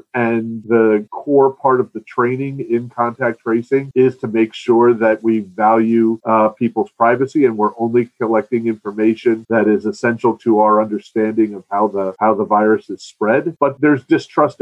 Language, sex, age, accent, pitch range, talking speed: English, male, 40-59, American, 105-125 Hz, 170 wpm